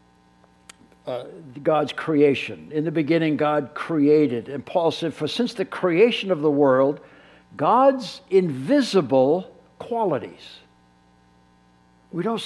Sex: male